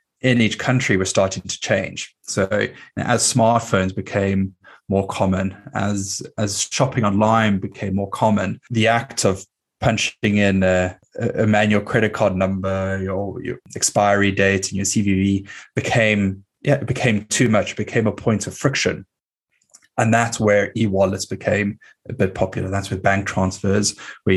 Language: English